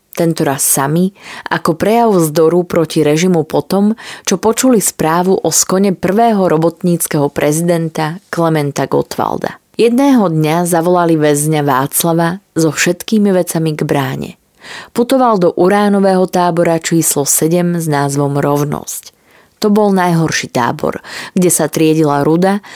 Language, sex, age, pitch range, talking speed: Slovak, female, 20-39, 155-195 Hz, 120 wpm